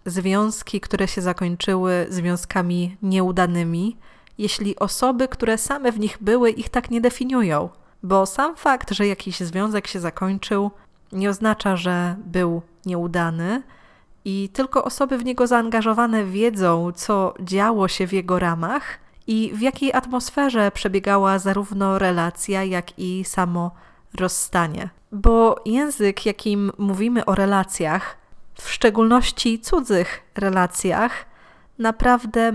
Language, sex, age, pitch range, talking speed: Polish, female, 20-39, 185-230 Hz, 120 wpm